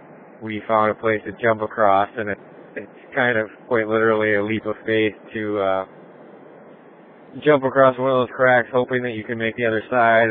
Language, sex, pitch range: English, male, 95-115 Hz